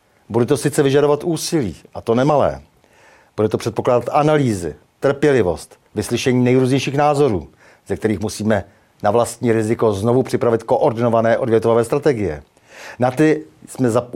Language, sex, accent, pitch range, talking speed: Czech, male, native, 115-140 Hz, 130 wpm